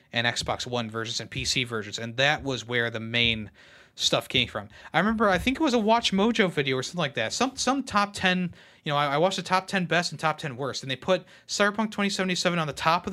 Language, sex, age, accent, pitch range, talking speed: English, male, 30-49, American, 125-180 Hz, 255 wpm